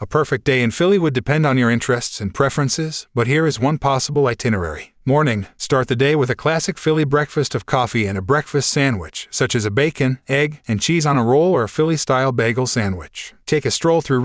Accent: American